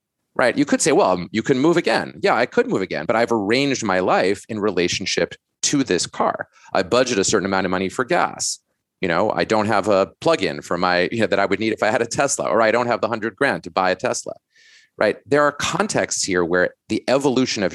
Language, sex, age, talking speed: English, male, 30-49, 245 wpm